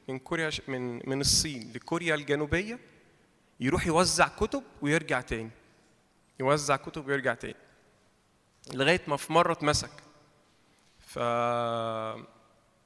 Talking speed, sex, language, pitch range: 105 wpm, male, Arabic, 135-175 Hz